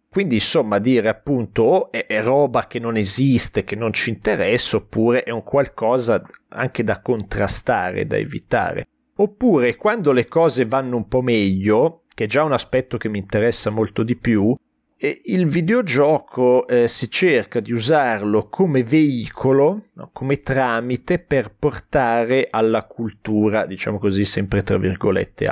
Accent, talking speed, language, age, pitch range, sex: native, 150 wpm, Italian, 30-49, 105-130 Hz, male